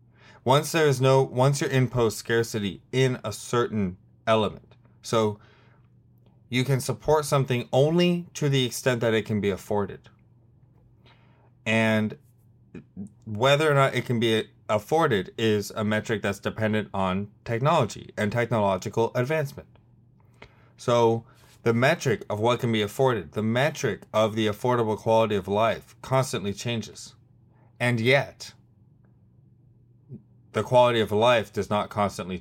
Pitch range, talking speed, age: 105-125 Hz, 130 wpm, 30-49